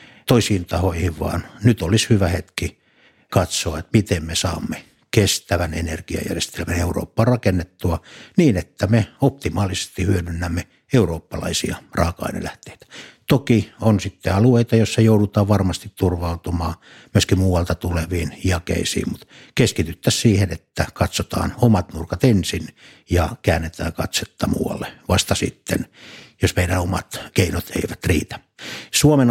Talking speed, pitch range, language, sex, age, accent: 115 wpm, 90-105 Hz, Finnish, male, 60-79, native